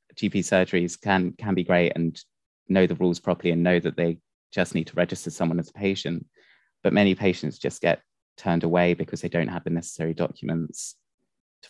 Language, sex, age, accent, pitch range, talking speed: English, male, 20-39, British, 85-95 Hz, 195 wpm